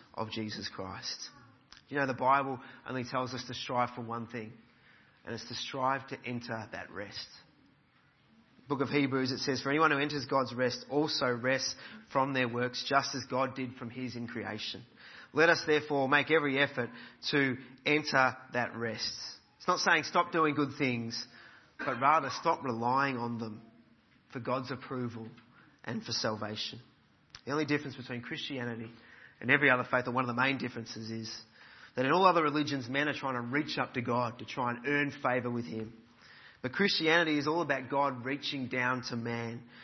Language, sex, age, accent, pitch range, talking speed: English, male, 30-49, Australian, 115-140 Hz, 185 wpm